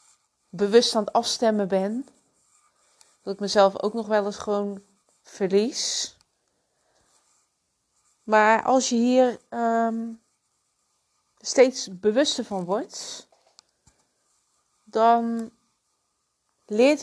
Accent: Dutch